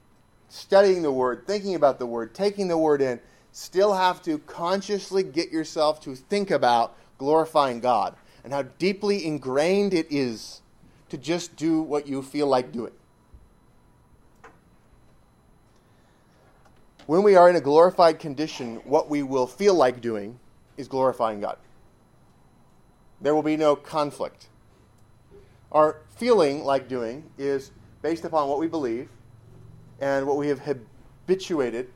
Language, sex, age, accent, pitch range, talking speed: English, male, 30-49, American, 130-170 Hz, 135 wpm